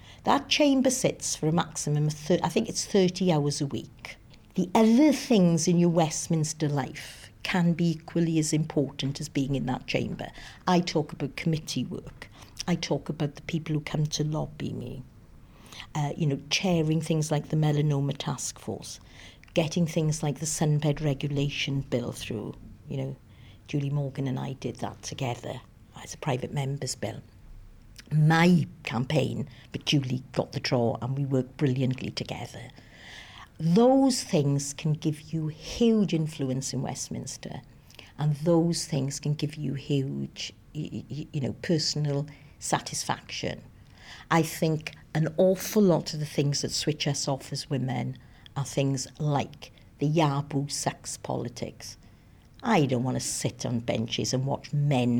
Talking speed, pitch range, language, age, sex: 155 wpm, 130-160 Hz, English, 50-69, female